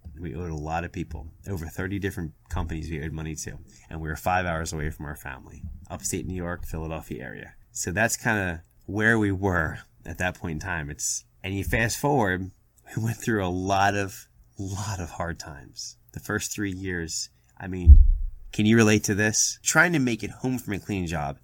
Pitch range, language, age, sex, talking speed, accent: 90-110 Hz, English, 30-49, male, 215 wpm, American